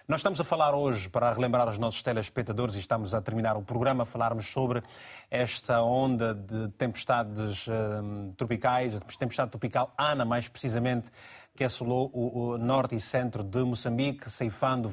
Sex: male